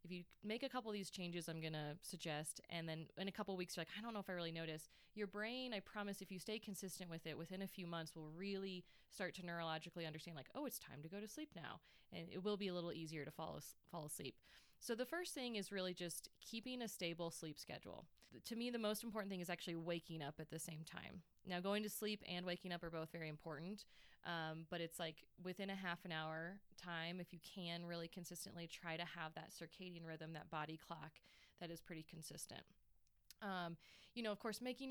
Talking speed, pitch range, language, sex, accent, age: 240 wpm, 165-195 Hz, English, female, American, 20-39